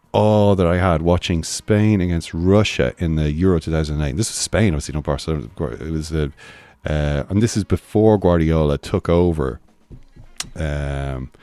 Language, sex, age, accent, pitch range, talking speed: English, male, 40-59, Irish, 80-105 Hz, 165 wpm